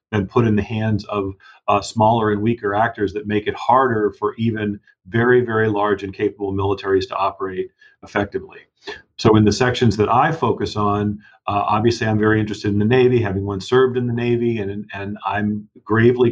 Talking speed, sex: 190 wpm, male